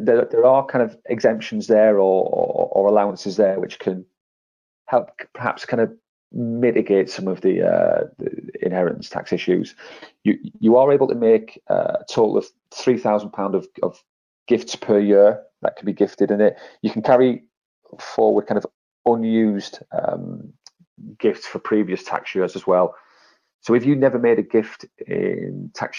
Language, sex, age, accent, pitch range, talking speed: English, male, 30-49, British, 95-120 Hz, 165 wpm